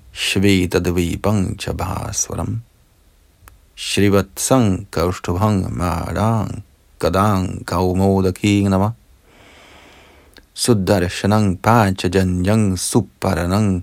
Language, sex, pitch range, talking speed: Danish, male, 90-100 Hz, 80 wpm